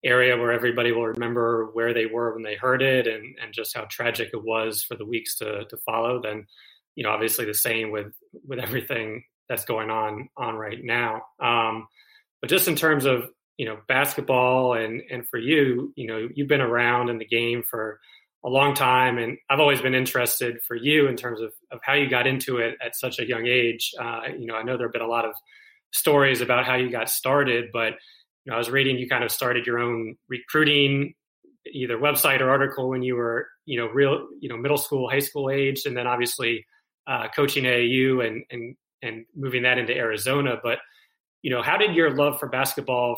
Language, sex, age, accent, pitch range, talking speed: English, male, 20-39, American, 115-140 Hz, 215 wpm